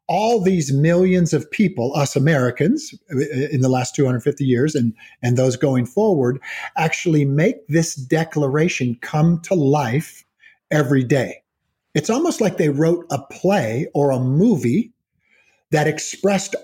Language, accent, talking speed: English, American, 135 wpm